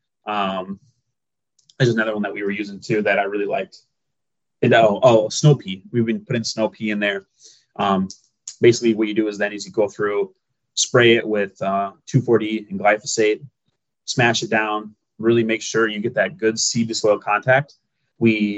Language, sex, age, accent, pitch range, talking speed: English, male, 20-39, American, 105-130 Hz, 185 wpm